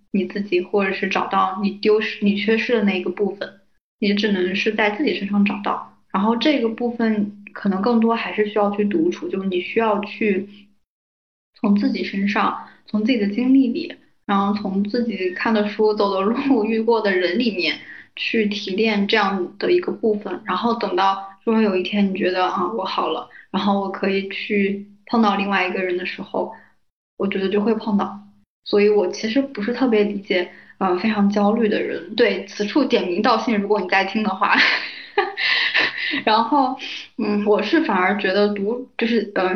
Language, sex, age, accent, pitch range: Chinese, female, 10-29, native, 195-225 Hz